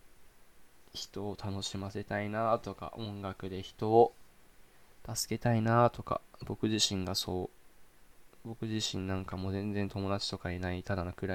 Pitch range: 95-105 Hz